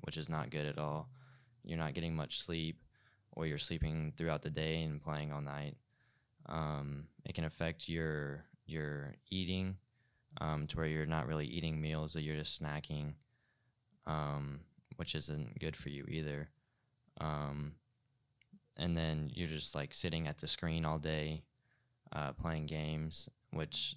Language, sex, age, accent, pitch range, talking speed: English, male, 10-29, American, 75-85 Hz, 160 wpm